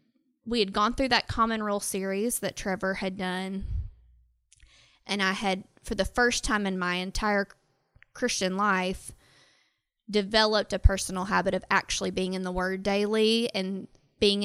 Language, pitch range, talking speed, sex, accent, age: English, 190-225 Hz, 155 wpm, female, American, 20-39